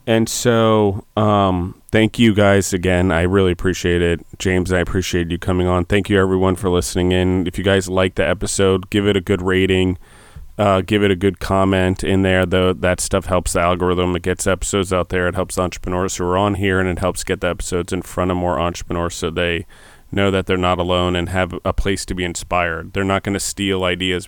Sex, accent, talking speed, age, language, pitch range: male, American, 225 wpm, 30-49, English, 90-95 Hz